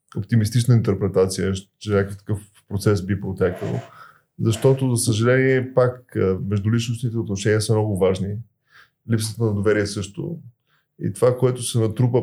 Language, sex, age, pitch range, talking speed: Bulgarian, male, 20-39, 105-130 Hz, 130 wpm